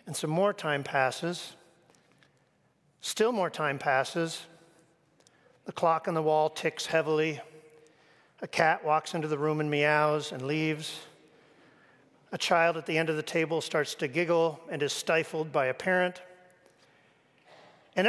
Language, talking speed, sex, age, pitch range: English, 145 wpm, male, 50-69, 155-215 Hz